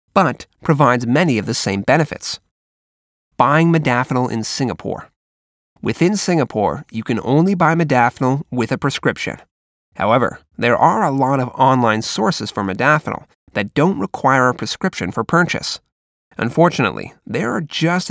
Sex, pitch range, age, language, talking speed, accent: male, 115-155 Hz, 30-49, English, 140 wpm, American